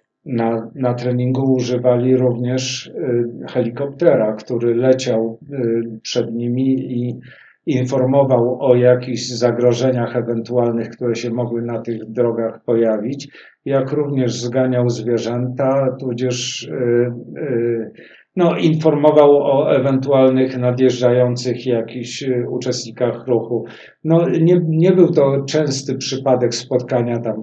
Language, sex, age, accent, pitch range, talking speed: Polish, male, 50-69, native, 120-145 Hz, 105 wpm